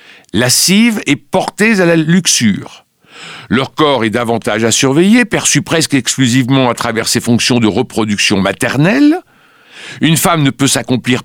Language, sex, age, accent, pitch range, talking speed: French, male, 60-79, French, 105-165 Hz, 150 wpm